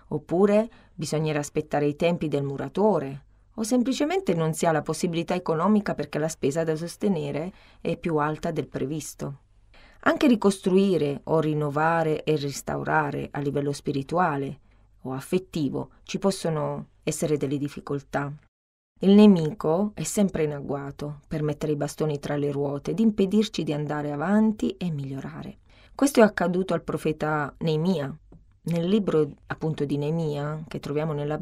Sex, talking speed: female, 145 wpm